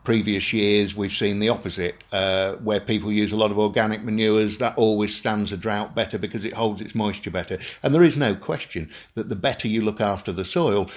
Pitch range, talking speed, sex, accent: 95-110 Hz, 220 wpm, male, British